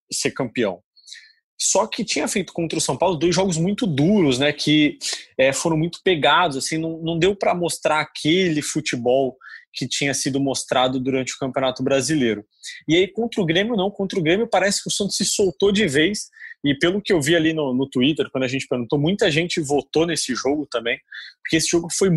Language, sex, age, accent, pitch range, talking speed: Portuguese, male, 20-39, Brazilian, 130-180 Hz, 205 wpm